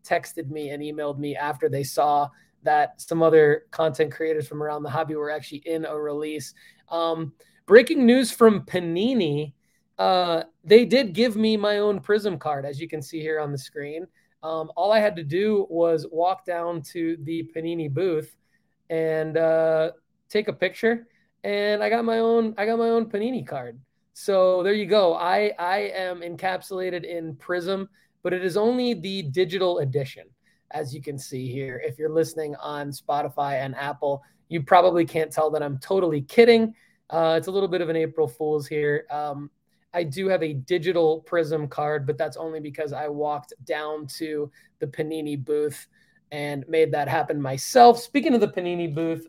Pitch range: 150-195 Hz